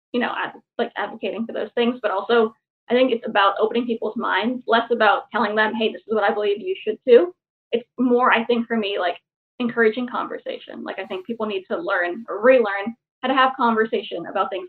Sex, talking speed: female, 215 wpm